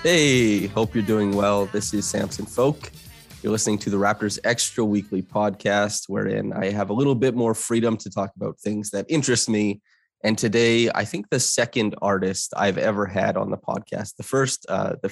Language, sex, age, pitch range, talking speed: English, male, 20-39, 100-120 Hz, 195 wpm